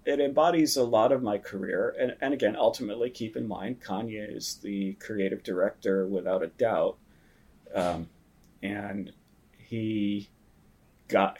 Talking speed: 135 wpm